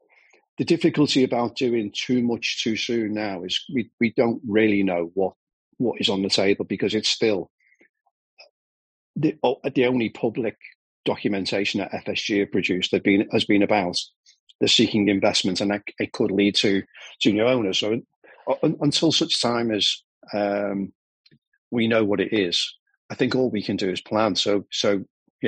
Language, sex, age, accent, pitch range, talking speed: English, male, 40-59, British, 95-120 Hz, 165 wpm